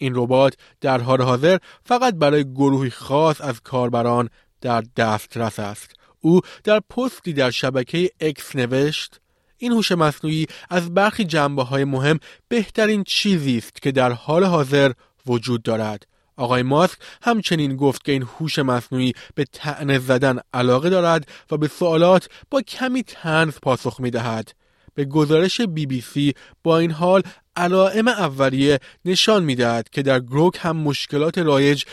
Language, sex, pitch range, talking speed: Persian, male, 130-180 Hz, 145 wpm